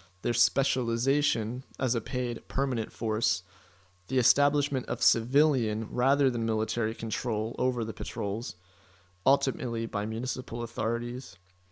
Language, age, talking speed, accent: English, 30-49, 115 wpm, American